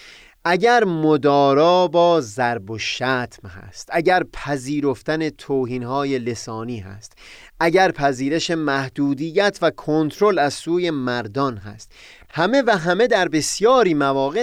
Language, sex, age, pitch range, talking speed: Persian, male, 30-49, 120-170 Hz, 110 wpm